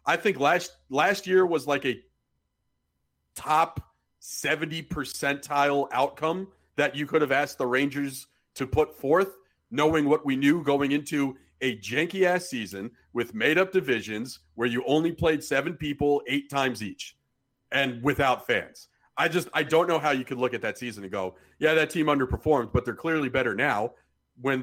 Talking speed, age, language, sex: 175 wpm, 40-59, English, male